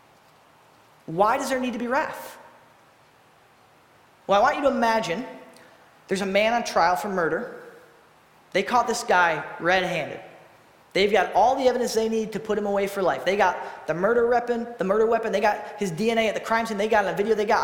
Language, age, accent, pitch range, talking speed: English, 20-39, American, 190-240 Hz, 210 wpm